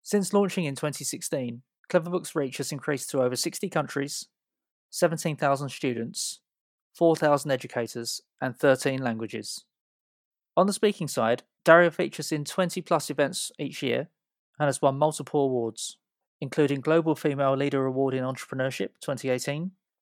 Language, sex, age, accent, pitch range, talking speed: English, male, 20-39, British, 125-155 Hz, 130 wpm